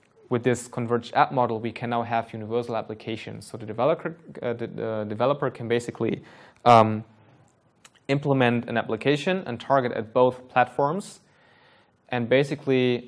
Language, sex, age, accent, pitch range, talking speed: English, male, 20-39, German, 110-130 Hz, 140 wpm